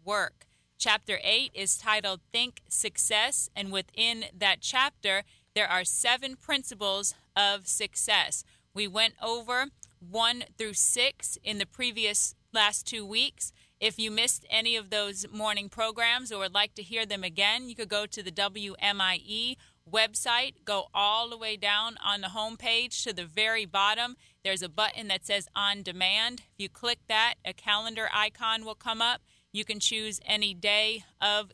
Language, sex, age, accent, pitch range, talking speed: English, female, 30-49, American, 195-225 Hz, 165 wpm